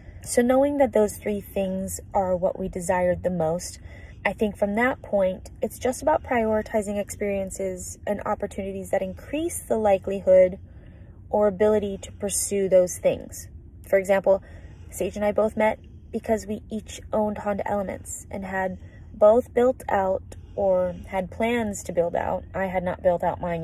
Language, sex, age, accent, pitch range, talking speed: English, female, 20-39, American, 180-210 Hz, 160 wpm